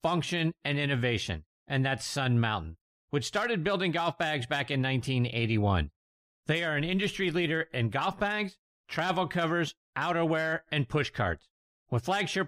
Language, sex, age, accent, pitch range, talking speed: English, male, 50-69, American, 130-180 Hz, 150 wpm